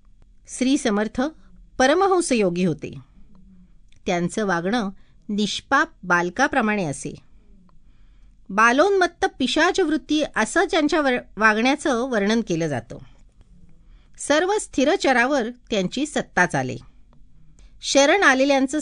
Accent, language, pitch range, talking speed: native, Marathi, 180-290 Hz, 85 wpm